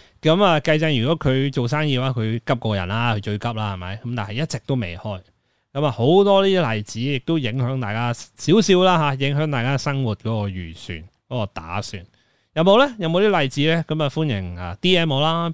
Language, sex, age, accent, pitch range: Chinese, male, 20-39, native, 105-145 Hz